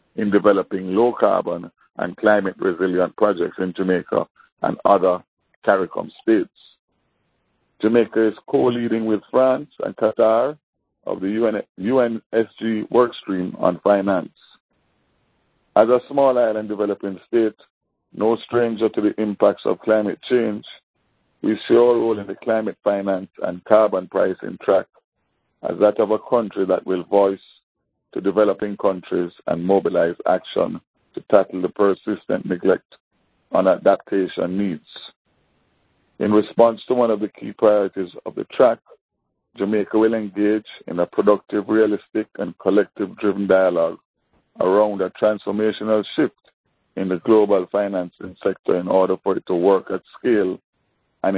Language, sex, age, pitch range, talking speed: English, male, 50-69, 95-110 Hz, 135 wpm